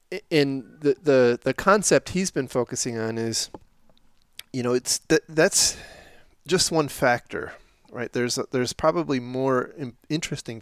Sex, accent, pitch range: male, American, 110-135 Hz